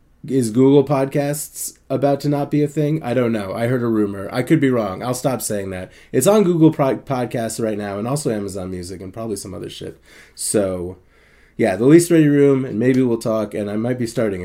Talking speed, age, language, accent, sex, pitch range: 225 wpm, 20-39, English, American, male, 110-140 Hz